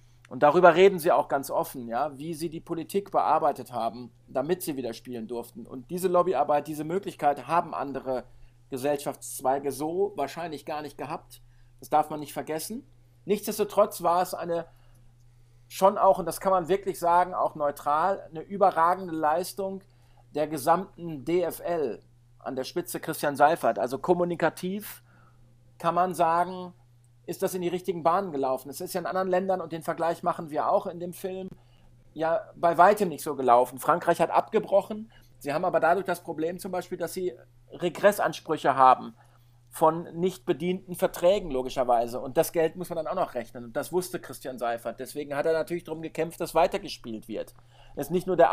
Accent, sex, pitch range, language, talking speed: German, male, 130-180 Hz, German, 175 wpm